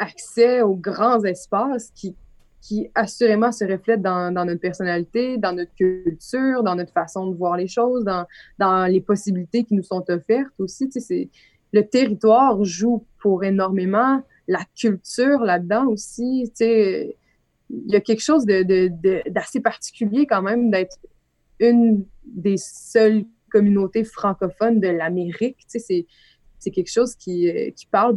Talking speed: 160 wpm